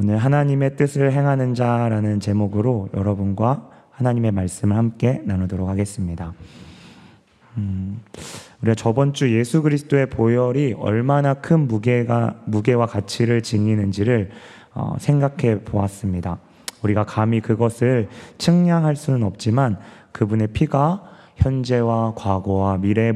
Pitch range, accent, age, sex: 105-135 Hz, native, 30-49, male